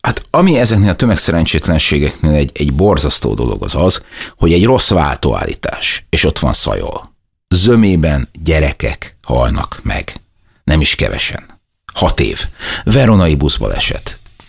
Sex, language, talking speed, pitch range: male, Hungarian, 130 wpm, 75-105 Hz